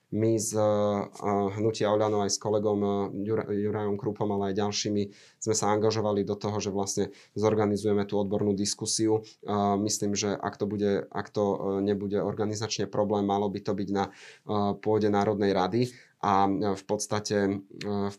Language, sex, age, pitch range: Slovak, male, 20-39, 100-105 Hz